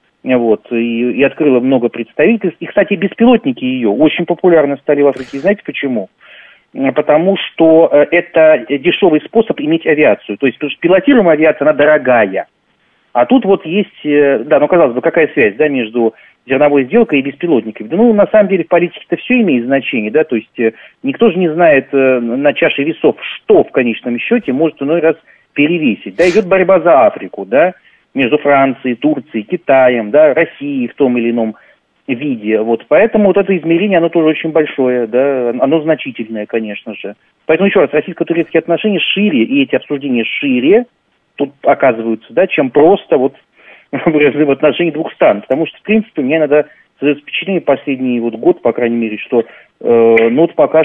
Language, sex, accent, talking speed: Russian, male, native, 170 wpm